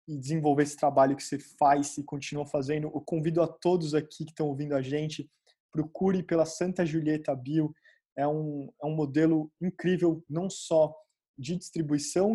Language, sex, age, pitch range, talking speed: Portuguese, male, 20-39, 150-180 Hz, 170 wpm